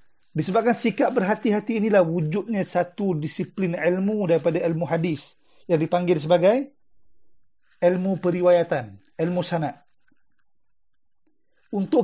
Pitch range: 170-215 Hz